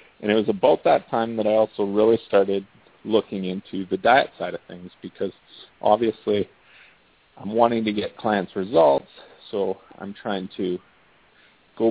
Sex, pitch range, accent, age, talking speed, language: male, 95-115 Hz, American, 40-59, 155 wpm, English